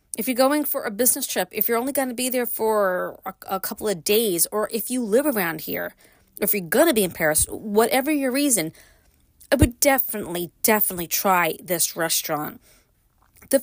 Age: 30-49